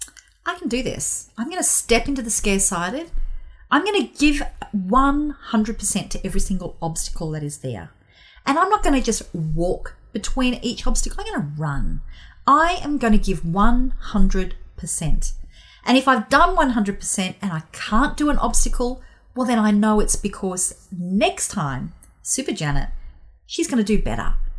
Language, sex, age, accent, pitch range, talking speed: English, female, 40-59, Australian, 165-230 Hz, 170 wpm